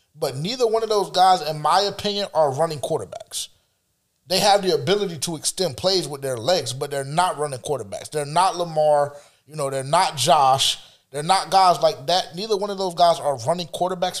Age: 20-39